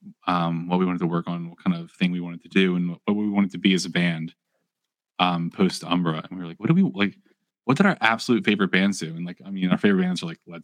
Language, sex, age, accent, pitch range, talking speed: English, male, 20-39, American, 90-140 Hz, 295 wpm